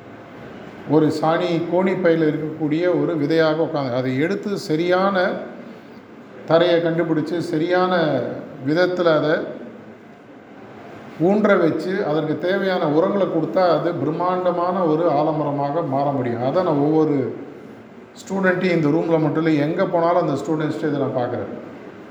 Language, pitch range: Tamil, 155-180 Hz